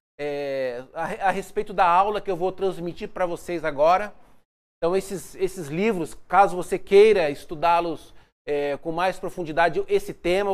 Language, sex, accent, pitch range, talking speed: Portuguese, male, Brazilian, 185-235 Hz, 155 wpm